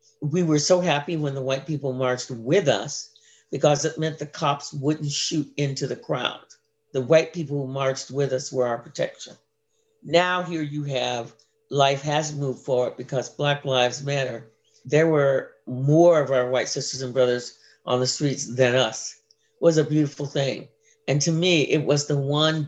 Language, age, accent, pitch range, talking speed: English, 50-69, American, 135-170 Hz, 185 wpm